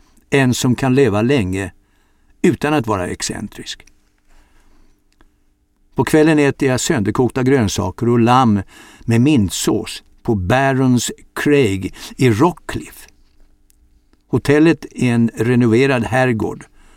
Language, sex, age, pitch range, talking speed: Swedish, male, 60-79, 100-135 Hz, 105 wpm